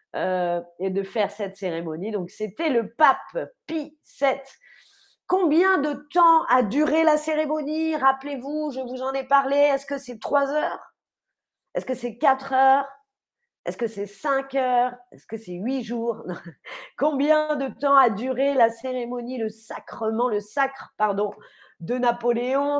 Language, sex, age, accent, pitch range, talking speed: French, female, 40-59, French, 230-305 Hz, 155 wpm